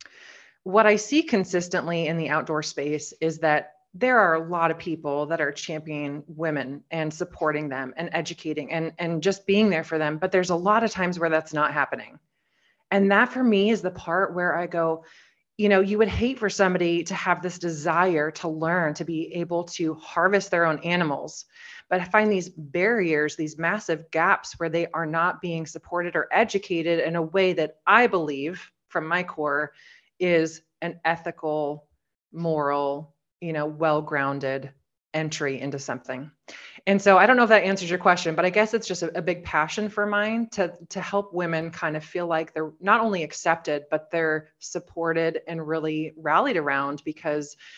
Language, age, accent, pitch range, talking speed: English, 30-49, American, 155-190 Hz, 185 wpm